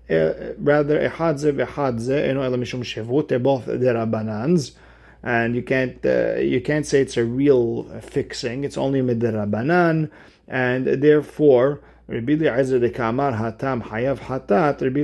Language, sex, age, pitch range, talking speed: English, male, 50-69, 115-140 Hz, 130 wpm